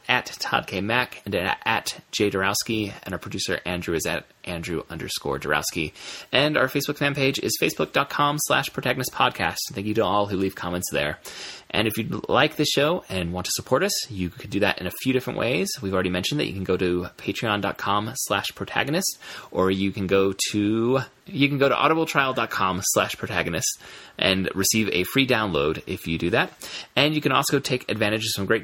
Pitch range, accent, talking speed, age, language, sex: 95-125 Hz, American, 200 wpm, 30-49, English, male